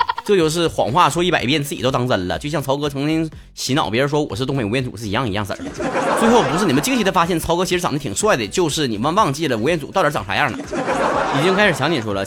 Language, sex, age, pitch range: Chinese, male, 30-49, 130-180 Hz